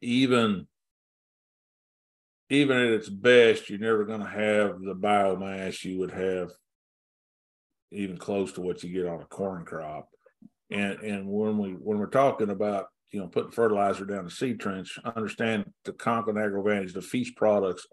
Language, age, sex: English, 50-69, male